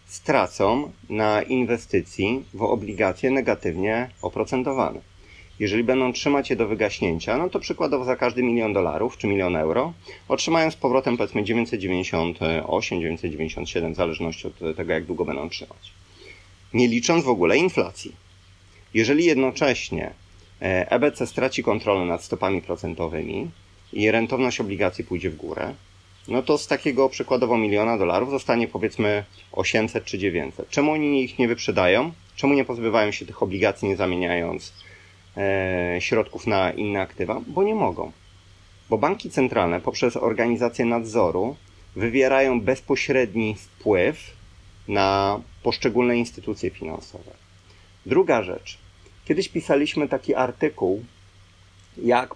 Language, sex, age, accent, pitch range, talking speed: Polish, male, 30-49, native, 95-125 Hz, 125 wpm